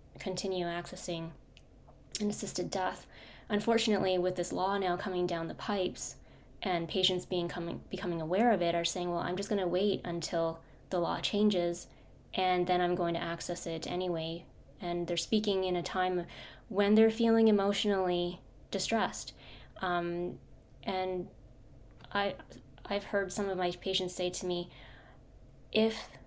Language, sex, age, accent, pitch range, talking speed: English, female, 20-39, American, 175-200 Hz, 150 wpm